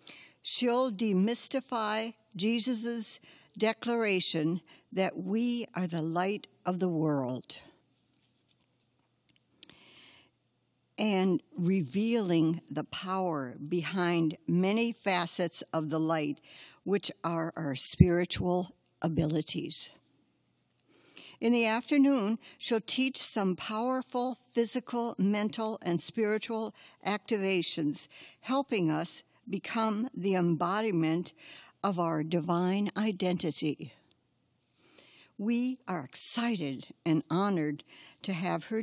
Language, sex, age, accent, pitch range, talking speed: English, female, 60-79, American, 170-220 Hz, 85 wpm